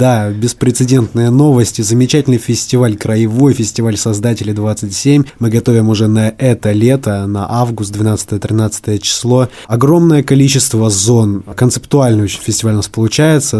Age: 20-39